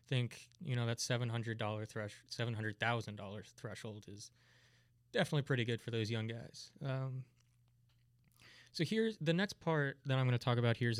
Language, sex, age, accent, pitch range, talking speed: English, male, 20-39, American, 115-125 Hz, 160 wpm